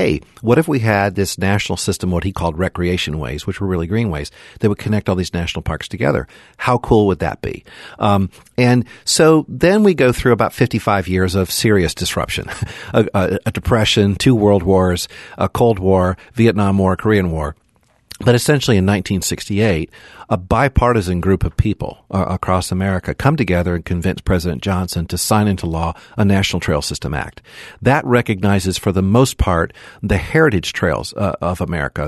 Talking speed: 180 wpm